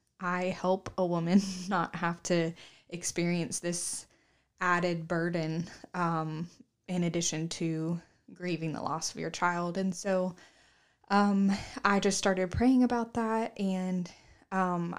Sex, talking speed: female, 130 wpm